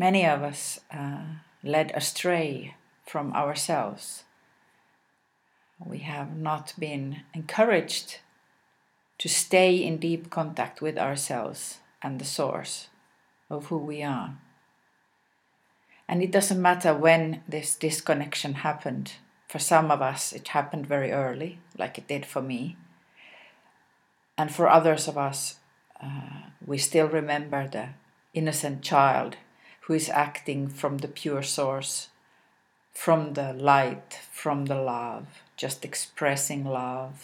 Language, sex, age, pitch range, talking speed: English, female, 50-69, 140-165 Hz, 120 wpm